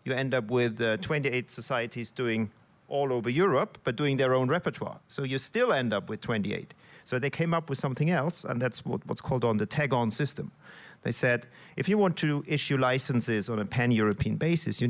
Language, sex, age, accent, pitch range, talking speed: English, male, 40-59, German, 120-155 Hz, 205 wpm